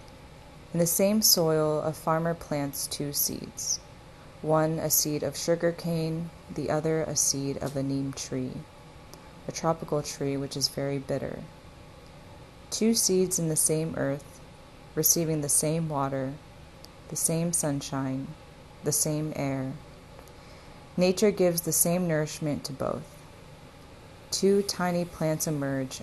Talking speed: 130 wpm